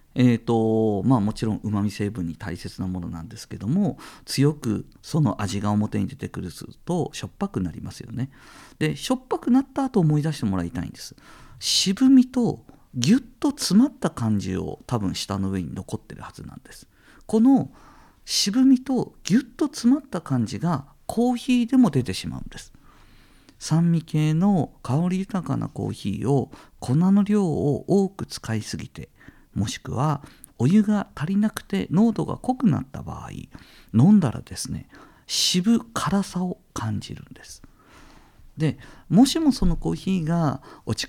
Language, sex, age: Japanese, male, 50-69